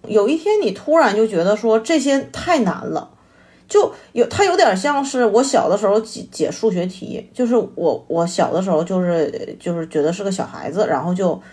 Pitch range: 185-265 Hz